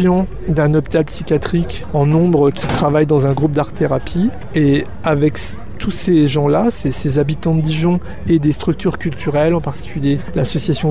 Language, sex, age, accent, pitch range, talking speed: French, male, 40-59, French, 145-170 Hz, 160 wpm